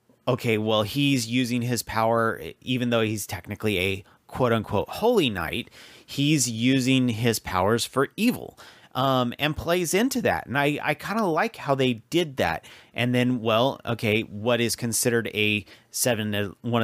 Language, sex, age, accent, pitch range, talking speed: English, male, 30-49, American, 105-130 Hz, 165 wpm